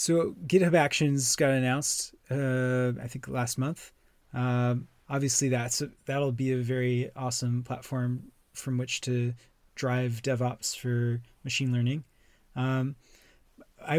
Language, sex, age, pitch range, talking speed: English, male, 20-39, 120-140 Hz, 125 wpm